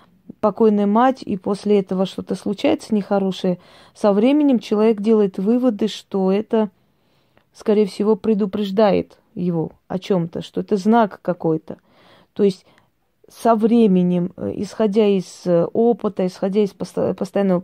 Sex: female